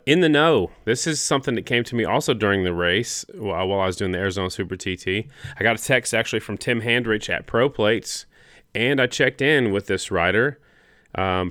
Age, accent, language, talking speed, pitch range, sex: 30-49, American, English, 215 wpm, 95-110 Hz, male